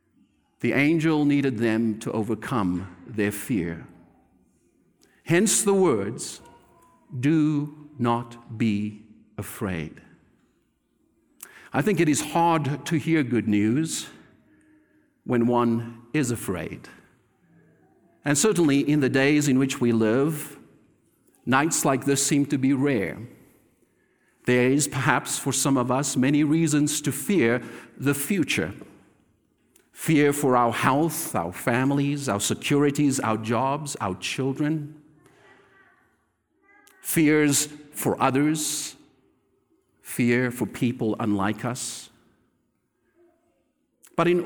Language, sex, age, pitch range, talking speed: English, male, 50-69, 120-155 Hz, 105 wpm